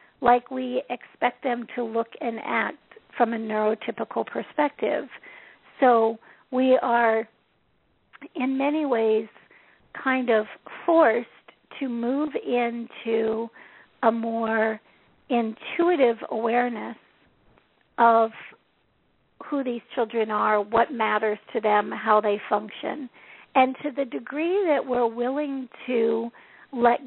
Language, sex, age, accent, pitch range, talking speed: English, female, 50-69, American, 225-270 Hz, 110 wpm